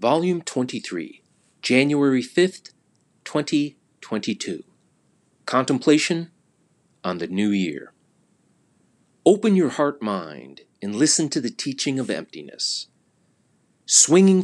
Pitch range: 110-155 Hz